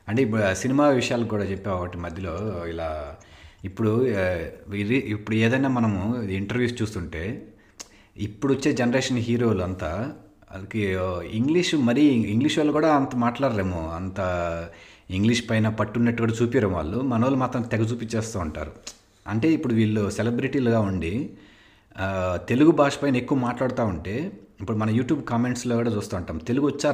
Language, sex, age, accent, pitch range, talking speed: Telugu, male, 30-49, native, 95-120 Hz, 125 wpm